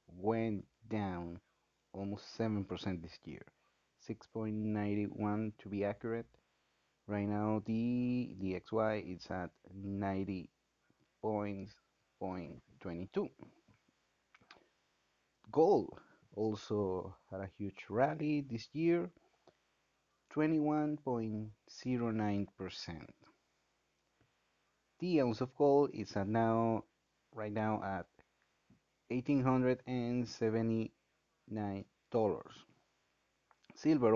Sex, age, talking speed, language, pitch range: male, 30-49, 85 wpm, English, 100-125 Hz